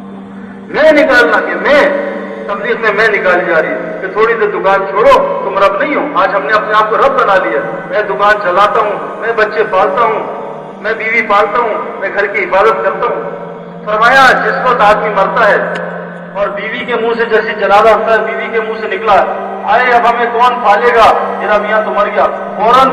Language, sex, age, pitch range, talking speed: Urdu, male, 40-59, 200-250 Hz, 205 wpm